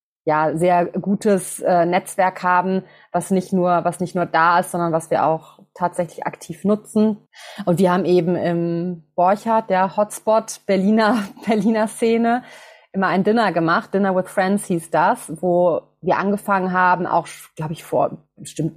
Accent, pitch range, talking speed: German, 170-200 Hz, 155 wpm